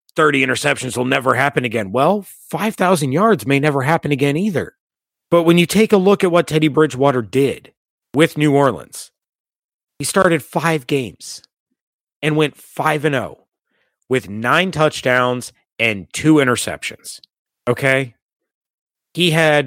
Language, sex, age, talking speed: English, male, 30-49, 135 wpm